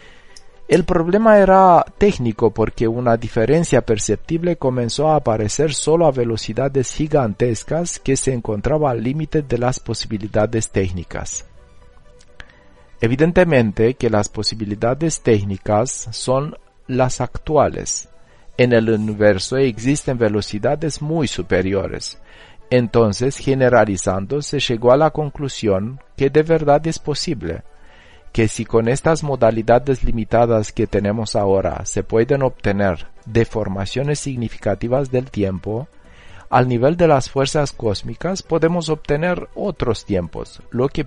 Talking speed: 115 wpm